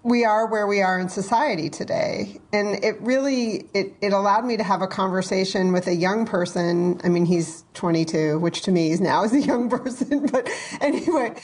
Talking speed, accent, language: 200 wpm, American, English